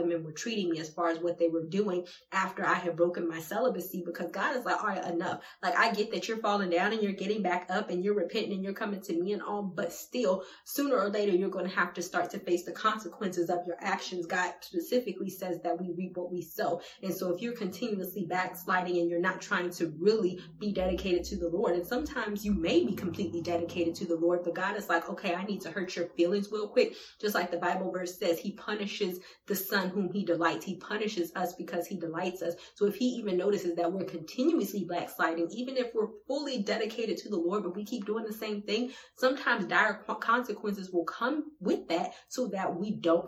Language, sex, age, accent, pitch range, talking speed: English, female, 20-39, American, 175-210 Hz, 235 wpm